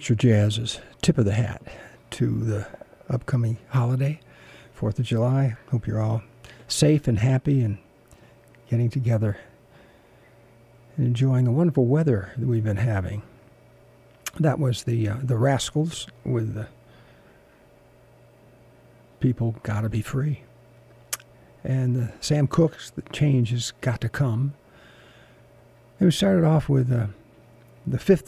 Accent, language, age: American, English, 60-79